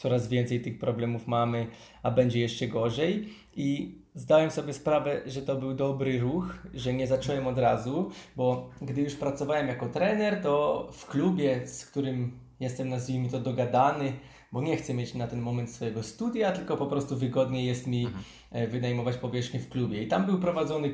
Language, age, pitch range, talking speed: Polish, 20-39, 125-160 Hz, 175 wpm